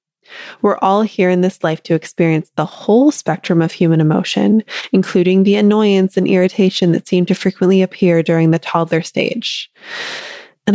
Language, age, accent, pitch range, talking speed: English, 20-39, American, 170-220 Hz, 160 wpm